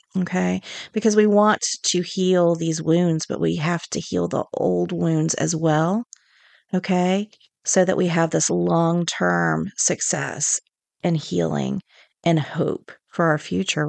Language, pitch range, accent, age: English, 165-200 Hz, American, 40-59